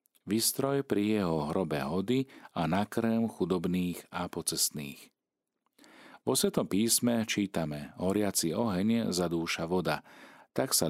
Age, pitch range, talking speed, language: 40-59, 80-105 Hz, 110 wpm, Slovak